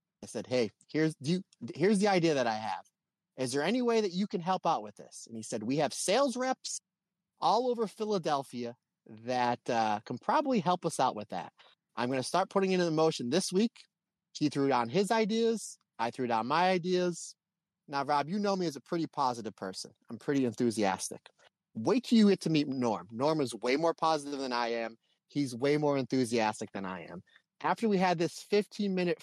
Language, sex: English, male